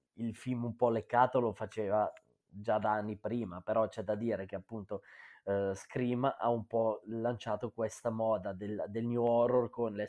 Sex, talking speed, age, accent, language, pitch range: male, 185 wpm, 20-39, native, Italian, 105-130 Hz